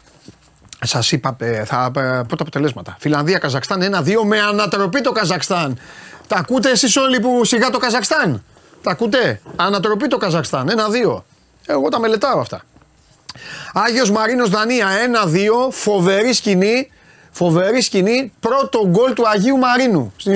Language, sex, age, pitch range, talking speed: Greek, male, 30-49, 165-230 Hz, 125 wpm